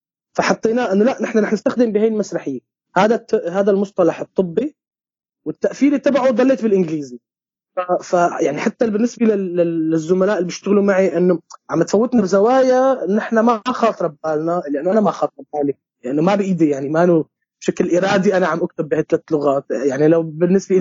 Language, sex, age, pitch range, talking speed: Arabic, male, 20-39, 170-220 Hz, 160 wpm